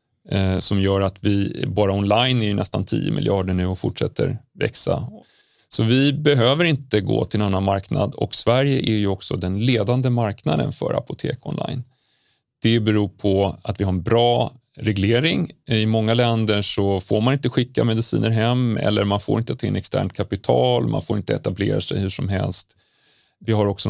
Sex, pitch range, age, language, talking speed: male, 95-120 Hz, 30-49, Swedish, 185 wpm